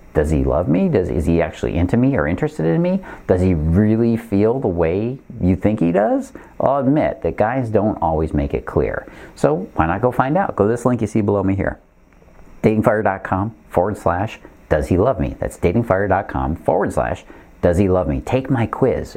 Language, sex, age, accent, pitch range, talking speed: English, male, 50-69, American, 80-110 Hz, 205 wpm